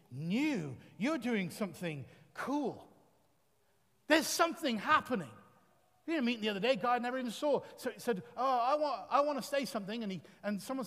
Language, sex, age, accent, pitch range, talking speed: English, male, 40-59, British, 215-285 Hz, 180 wpm